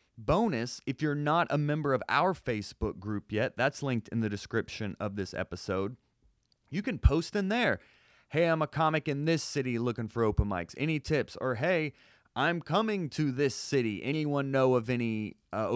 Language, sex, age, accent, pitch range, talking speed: English, male, 30-49, American, 110-160 Hz, 185 wpm